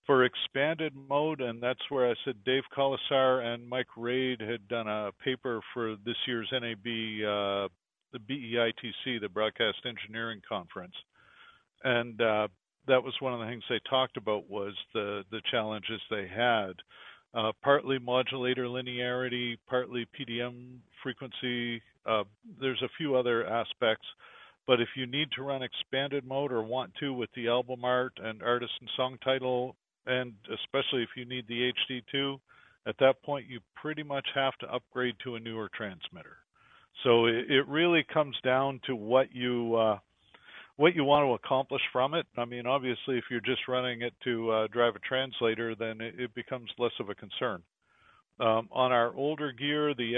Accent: American